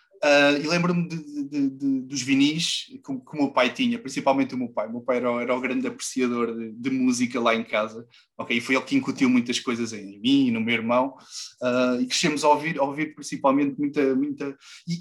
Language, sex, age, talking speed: Portuguese, male, 20-39, 235 wpm